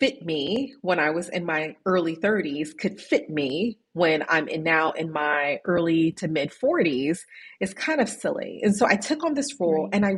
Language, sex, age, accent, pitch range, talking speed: English, female, 30-49, American, 160-210 Hz, 200 wpm